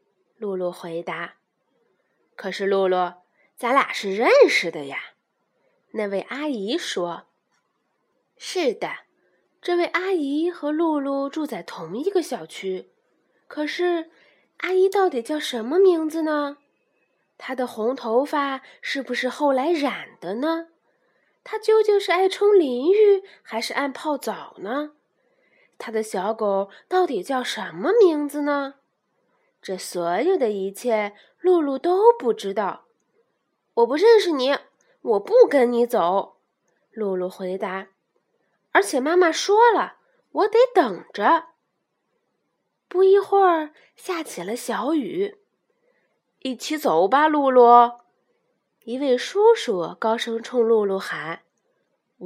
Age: 20-39